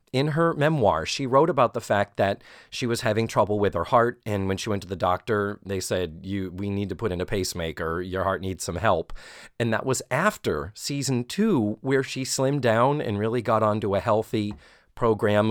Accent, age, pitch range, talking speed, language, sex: American, 30-49, 100-145 Hz, 215 wpm, English, male